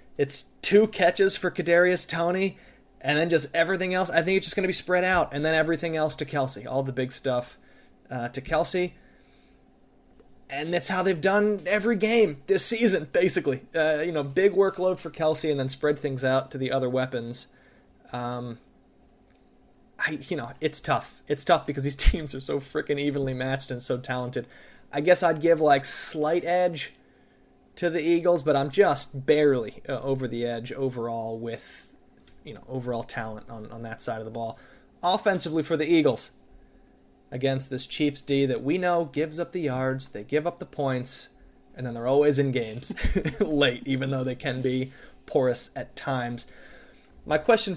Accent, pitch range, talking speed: American, 125-170 Hz, 180 wpm